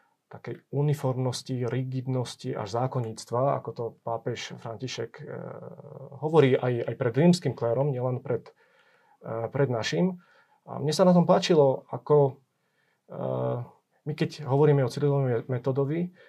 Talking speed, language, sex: 120 wpm, Slovak, male